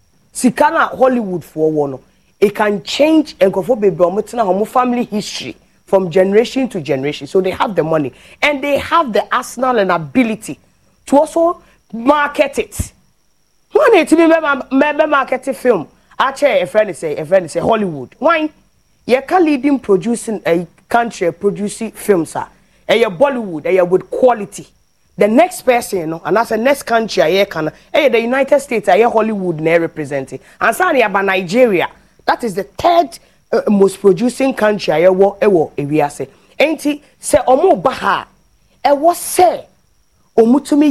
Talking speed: 170 wpm